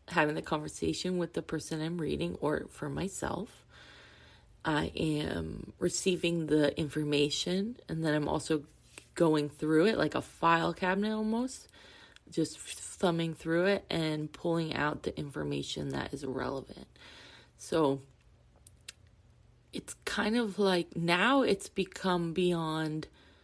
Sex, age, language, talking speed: female, 20-39, English, 125 wpm